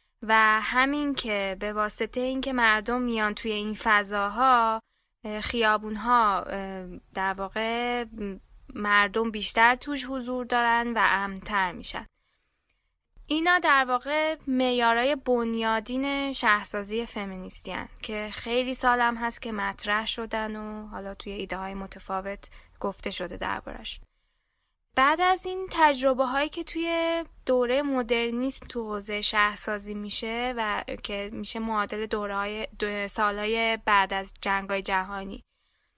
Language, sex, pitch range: Persian, female, 205-255 Hz